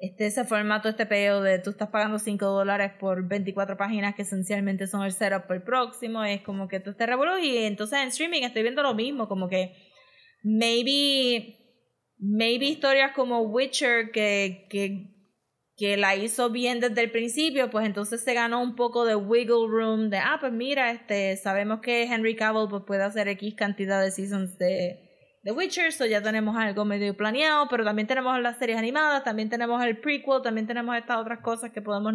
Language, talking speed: Spanish, 185 wpm